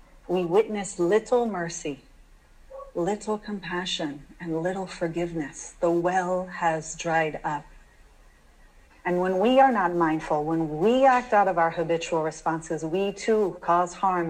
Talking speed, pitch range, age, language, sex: 135 wpm, 160-200 Hz, 40-59, English, female